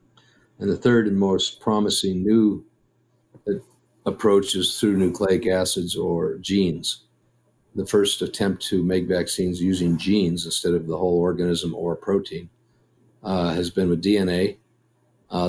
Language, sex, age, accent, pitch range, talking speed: English, male, 50-69, American, 90-100 Hz, 135 wpm